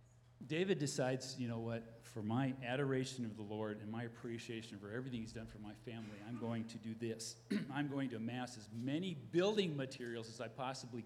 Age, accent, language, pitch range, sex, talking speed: 40-59, American, English, 115-135 Hz, male, 200 wpm